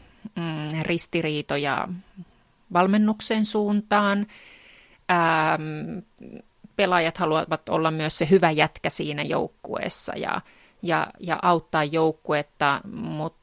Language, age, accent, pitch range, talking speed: English, 30-49, Finnish, 160-185 Hz, 80 wpm